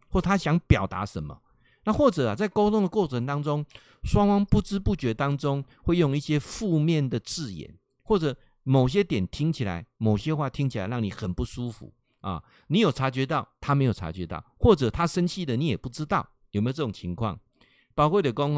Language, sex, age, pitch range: Chinese, male, 50-69, 105-150 Hz